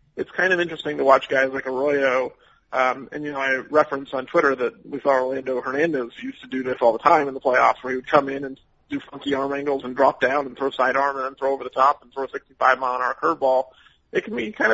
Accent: American